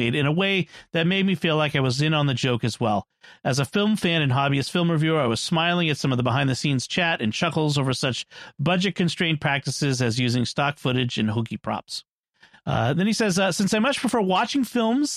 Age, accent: 40-59, American